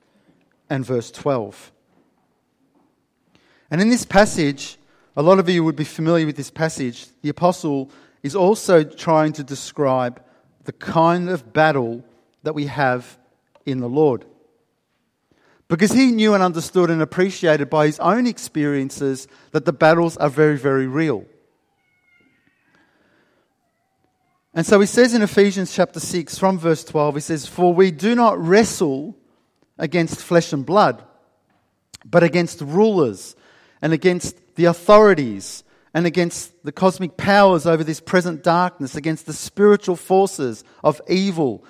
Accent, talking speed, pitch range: Australian, 140 wpm, 150-195 Hz